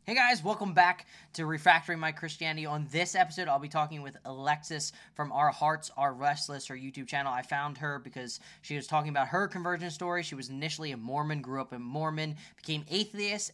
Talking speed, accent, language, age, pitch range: 205 wpm, American, English, 10-29, 135-165 Hz